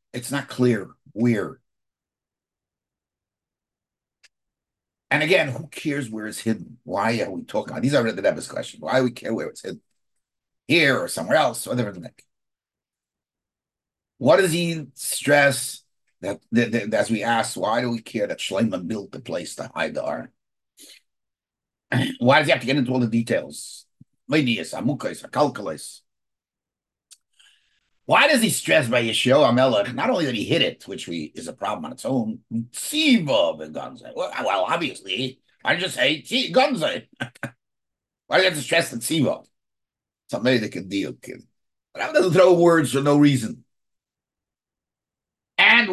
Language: English